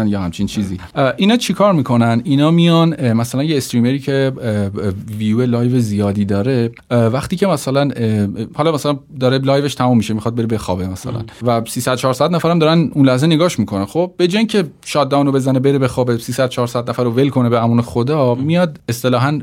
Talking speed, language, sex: 180 wpm, Persian, male